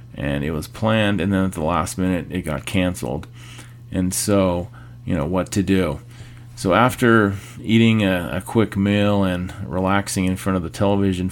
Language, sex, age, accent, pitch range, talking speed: English, male, 40-59, American, 95-120 Hz, 180 wpm